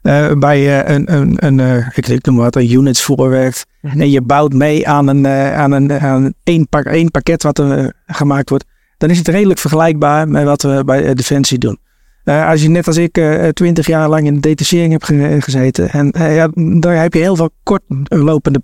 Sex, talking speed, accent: male, 220 wpm, Dutch